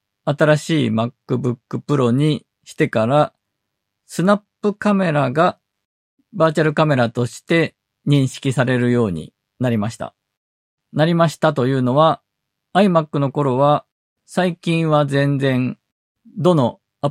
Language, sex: Japanese, male